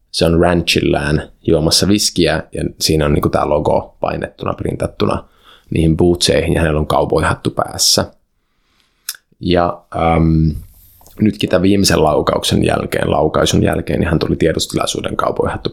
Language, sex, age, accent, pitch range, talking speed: Finnish, male, 20-39, native, 80-100 Hz, 130 wpm